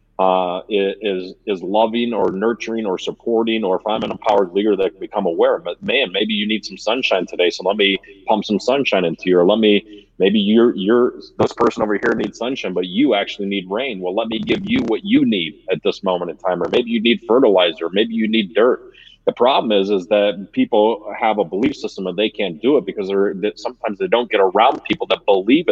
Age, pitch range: 30-49, 105-165 Hz